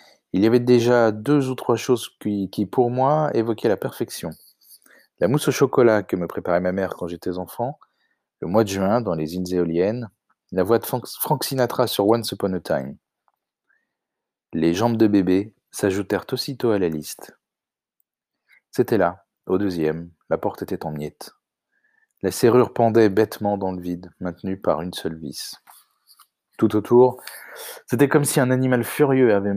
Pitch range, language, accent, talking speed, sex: 95-120 Hz, French, French, 170 wpm, male